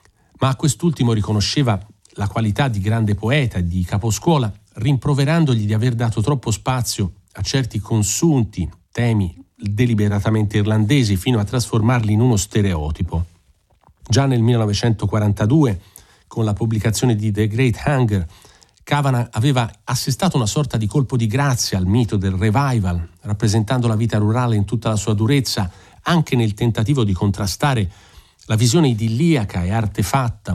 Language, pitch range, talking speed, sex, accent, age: Italian, 100-125 Hz, 140 wpm, male, native, 40-59